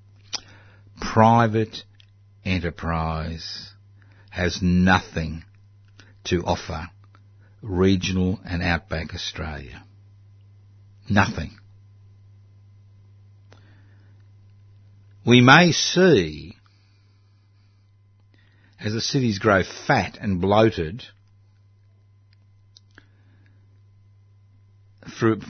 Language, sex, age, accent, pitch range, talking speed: English, male, 60-79, Australian, 95-100 Hz, 50 wpm